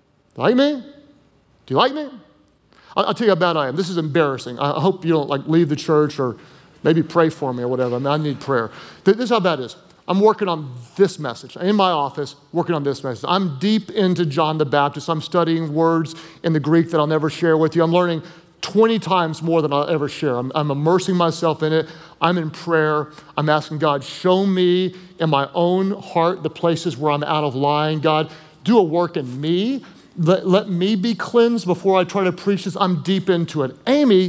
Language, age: English, 40-59